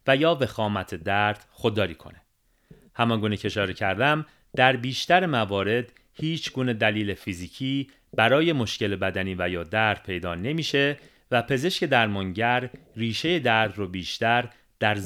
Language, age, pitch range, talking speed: Persian, 40-59, 95-130 Hz, 135 wpm